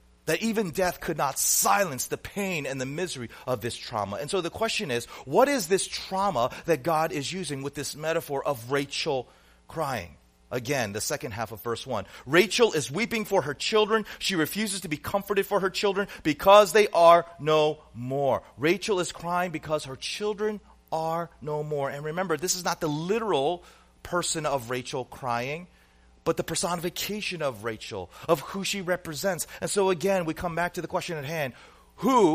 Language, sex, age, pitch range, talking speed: English, male, 30-49, 135-190 Hz, 185 wpm